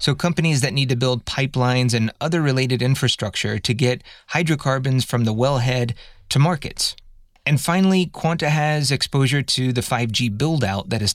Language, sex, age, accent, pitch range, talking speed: English, male, 30-49, American, 115-140 Hz, 160 wpm